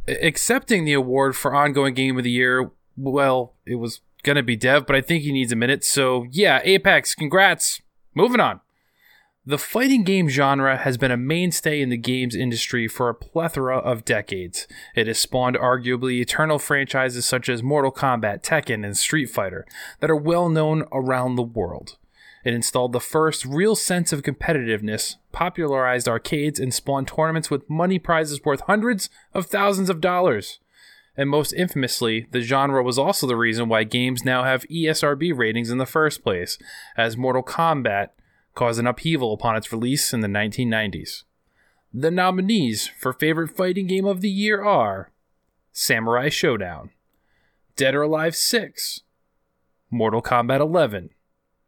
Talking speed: 160 wpm